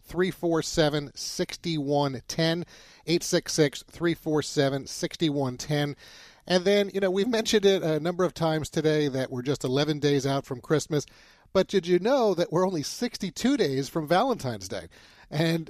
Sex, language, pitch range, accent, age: male, English, 140-175 Hz, American, 40-59